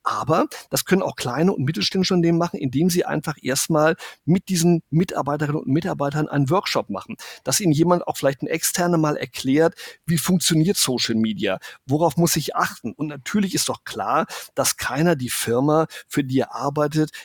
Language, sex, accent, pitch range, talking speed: German, male, German, 140-165 Hz, 175 wpm